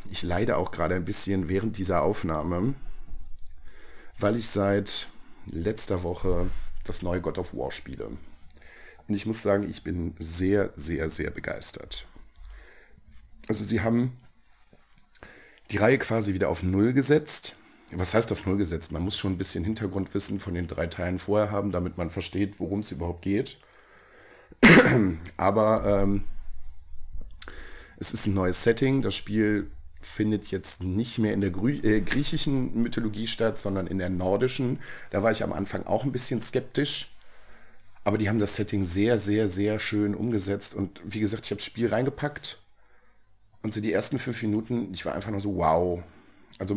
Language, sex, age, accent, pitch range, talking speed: German, male, 40-59, German, 95-110 Hz, 165 wpm